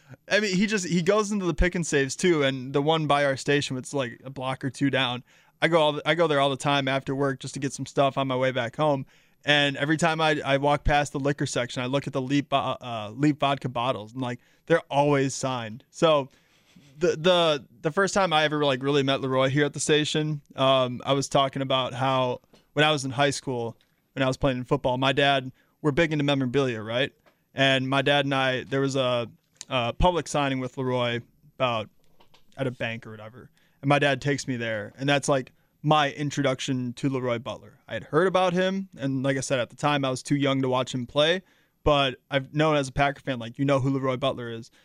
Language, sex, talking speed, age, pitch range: English, male, 235 wpm, 20-39, 130-150 Hz